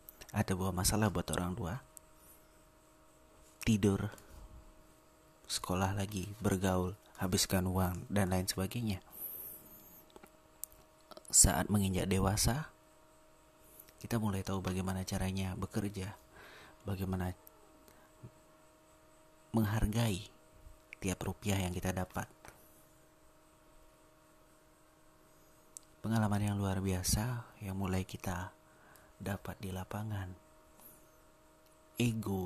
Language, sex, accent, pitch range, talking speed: Indonesian, male, native, 95-105 Hz, 75 wpm